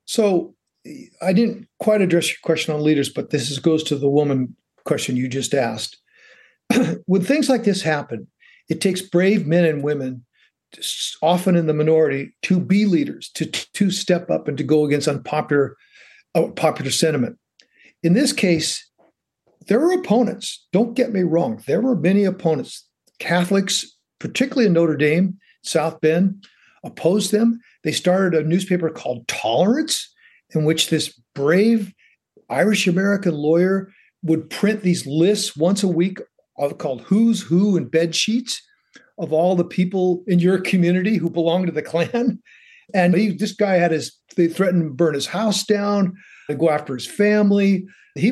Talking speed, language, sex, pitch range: 160 wpm, English, male, 160-205 Hz